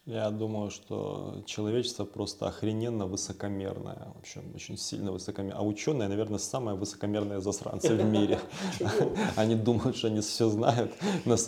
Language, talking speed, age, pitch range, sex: Ukrainian, 140 wpm, 20-39, 95-110 Hz, male